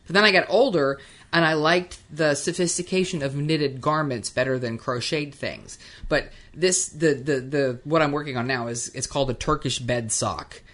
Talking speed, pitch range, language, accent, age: 190 wpm, 130-160 Hz, English, American, 30-49